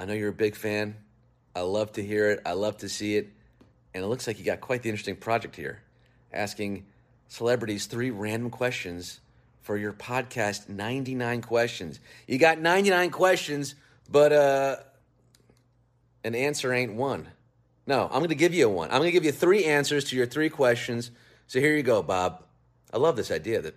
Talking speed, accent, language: 190 wpm, American, English